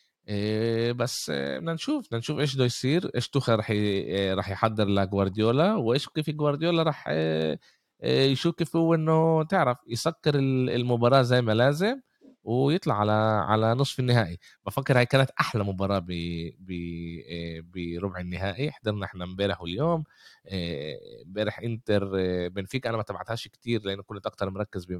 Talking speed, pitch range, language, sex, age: 135 wpm, 95-125 Hz, Arabic, male, 20-39